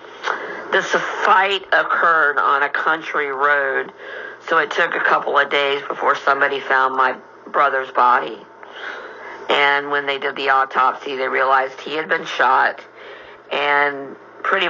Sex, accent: female, American